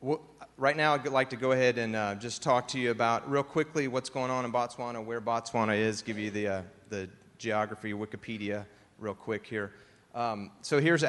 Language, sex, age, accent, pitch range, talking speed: English, male, 30-49, American, 105-130 Hz, 200 wpm